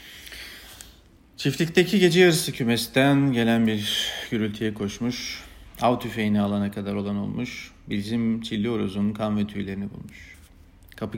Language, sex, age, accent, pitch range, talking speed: Turkish, male, 40-59, native, 90-110 Hz, 120 wpm